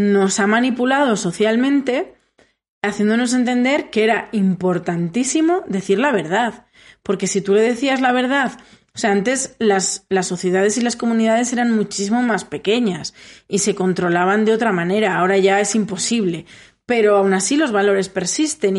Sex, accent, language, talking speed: female, Spanish, Spanish, 155 wpm